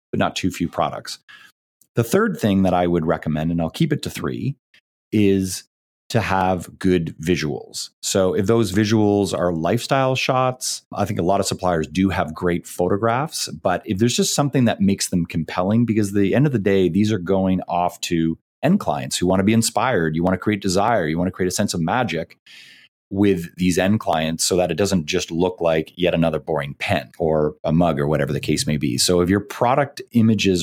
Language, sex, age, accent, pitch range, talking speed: English, male, 30-49, American, 85-110 Hz, 215 wpm